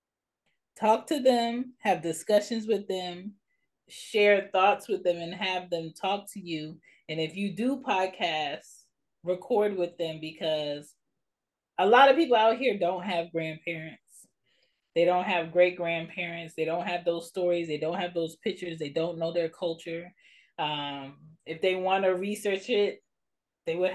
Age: 20-39